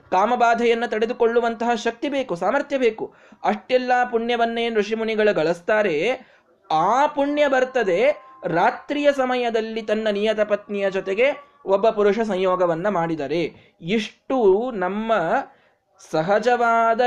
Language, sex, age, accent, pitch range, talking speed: Kannada, male, 20-39, native, 190-255 Hz, 90 wpm